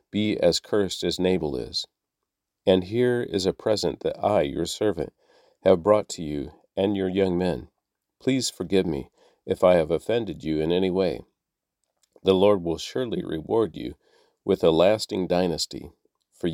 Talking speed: 165 wpm